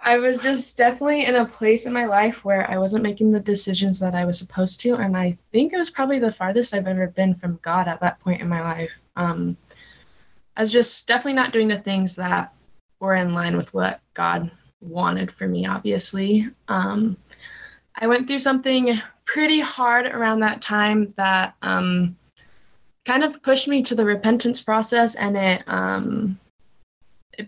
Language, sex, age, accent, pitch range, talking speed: English, female, 20-39, American, 190-240 Hz, 185 wpm